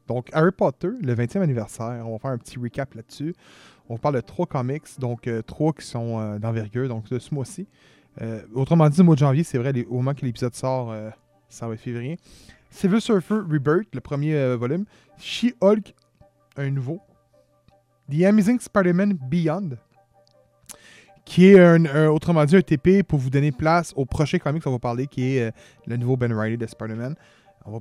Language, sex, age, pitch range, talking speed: French, male, 20-39, 120-170 Hz, 195 wpm